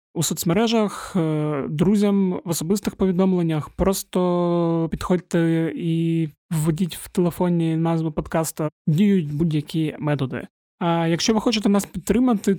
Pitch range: 160-190 Hz